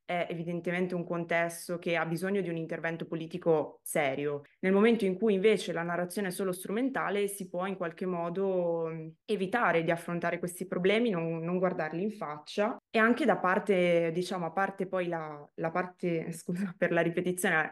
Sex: female